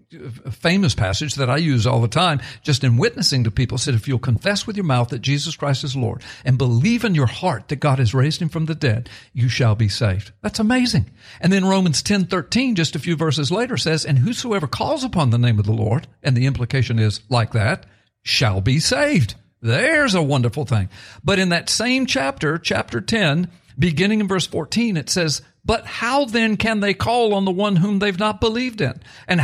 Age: 60-79